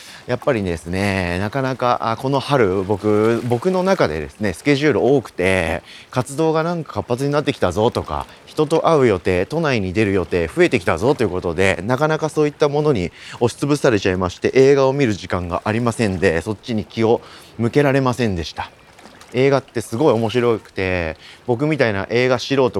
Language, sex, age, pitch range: Japanese, male, 30-49, 95-145 Hz